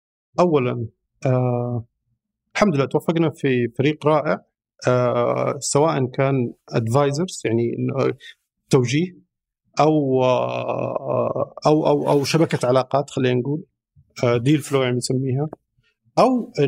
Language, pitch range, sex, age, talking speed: Arabic, 125-165 Hz, male, 50-69, 95 wpm